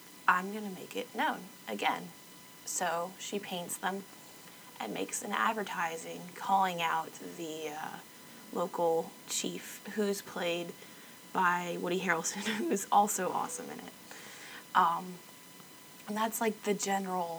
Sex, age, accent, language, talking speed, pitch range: female, 20-39, American, English, 125 wpm, 170-215 Hz